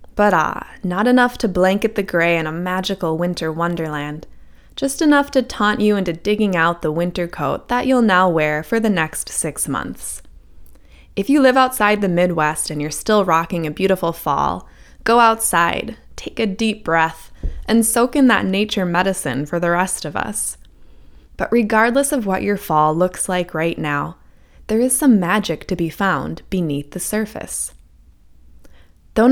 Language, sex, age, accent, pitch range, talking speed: English, female, 20-39, American, 160-210 Hz, 170 wpm